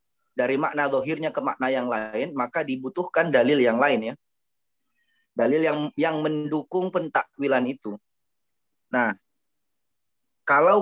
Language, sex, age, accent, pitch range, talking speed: Indonesian, male, 20-39, native, 135-175 Hz, 115 wpm